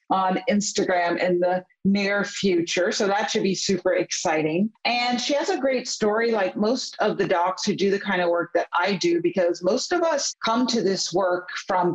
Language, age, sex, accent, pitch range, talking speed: English, 50-69, female, American, 180-225 Hz, 205 wpm